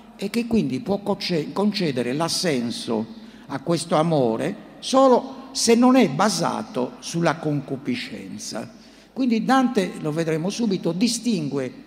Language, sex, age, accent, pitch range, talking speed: Italian, male, 60-79, native, 140-220 Hz, 110 wpm